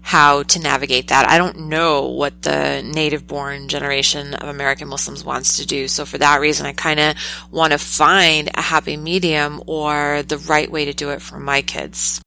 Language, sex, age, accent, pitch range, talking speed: English, female, 30-49, American, 145-165 Hz, 195 wpm